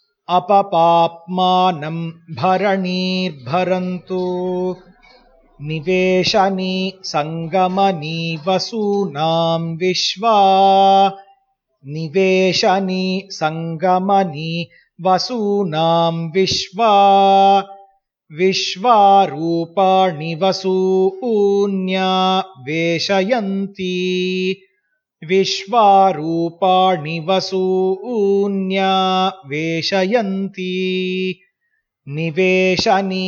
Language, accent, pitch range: Hindi, native, 170-195 Hz